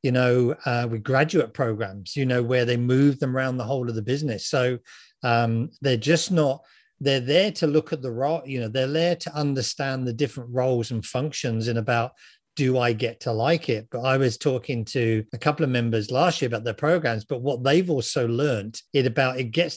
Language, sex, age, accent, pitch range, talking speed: English, male, 50-69, British, 120-145 Hz, 220 wpm